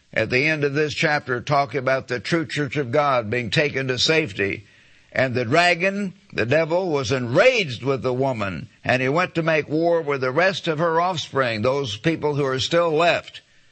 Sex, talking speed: male, 195 wpm